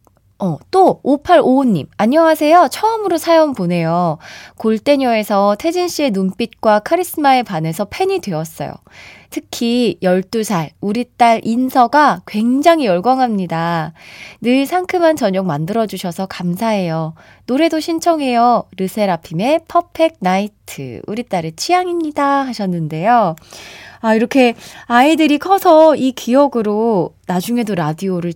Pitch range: 180-290 Hz